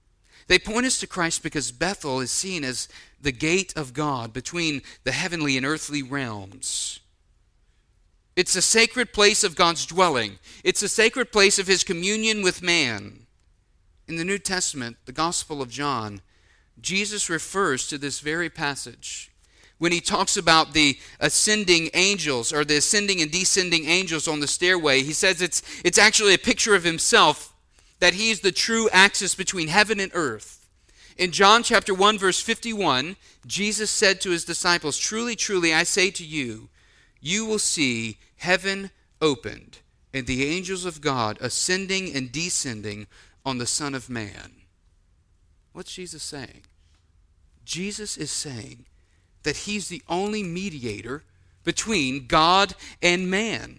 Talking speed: 150 wpm